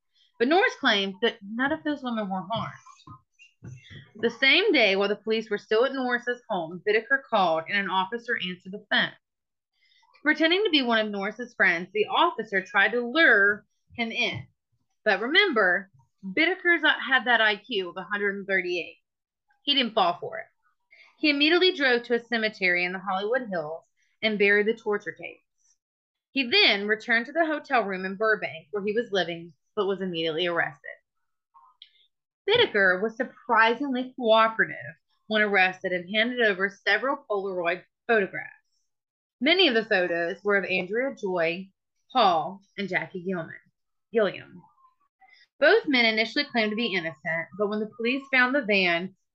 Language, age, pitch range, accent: English, 30-49, 190-265 Hz, American